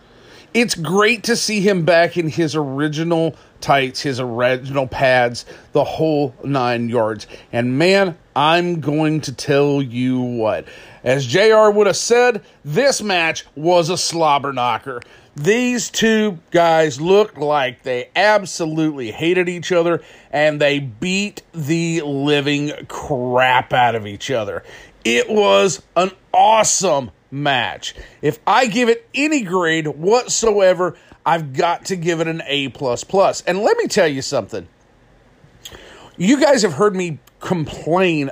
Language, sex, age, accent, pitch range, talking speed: English, male, 40-59, American, 135-185 Hz, 140 wpm